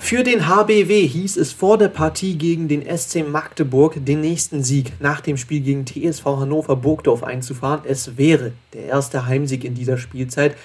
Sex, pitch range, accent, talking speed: male, 135-165 Hz, German, 175 wpm